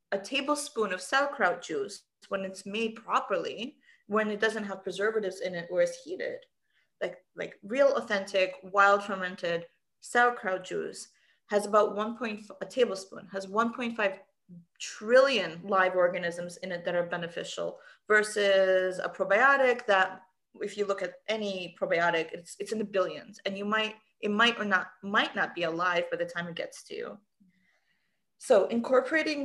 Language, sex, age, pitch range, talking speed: English, female, 30-49, 185-225 Hz, 165 wpm